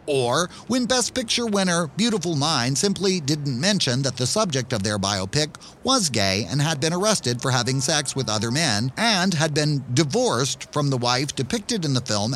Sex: male